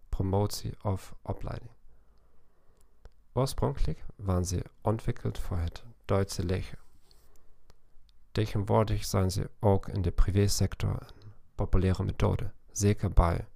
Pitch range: 90-110 Hz